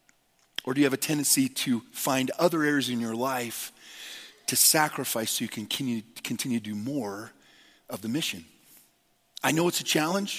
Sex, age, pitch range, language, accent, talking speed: male, 40-59, 125-165 Hz, English, American, 175 wpm